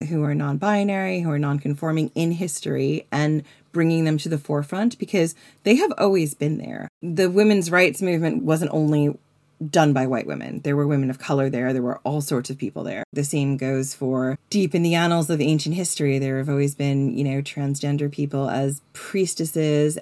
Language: English